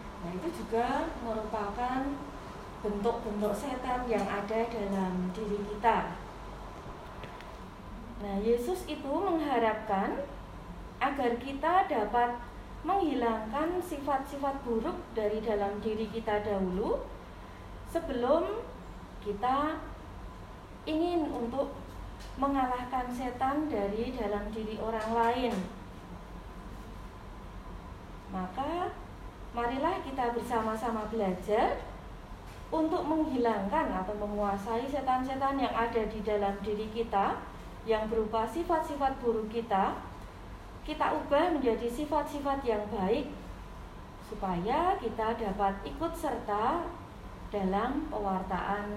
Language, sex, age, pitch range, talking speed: Indonesian, female, 30-49, 200-270 Hz, 90 wpm